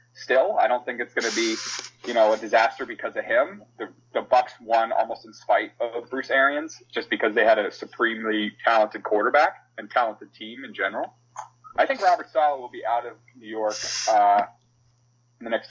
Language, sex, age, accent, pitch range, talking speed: English, male, 30-49, American, 120-145 Hz, 200 wpm